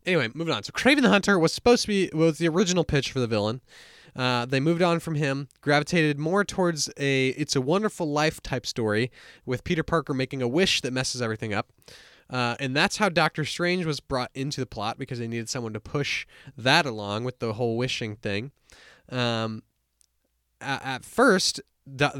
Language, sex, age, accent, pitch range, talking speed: English, male, 20-39, American, 120-160 Hz, 200 wpm